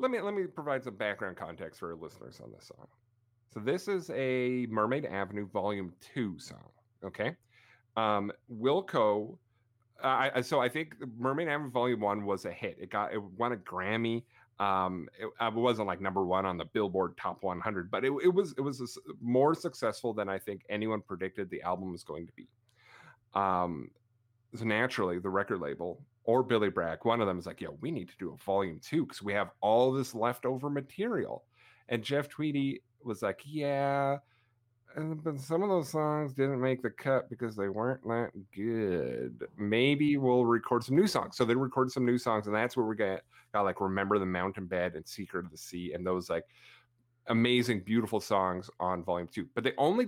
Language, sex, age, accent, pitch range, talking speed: English, male, 30-49, American, 100-135 Hz, 195 wpm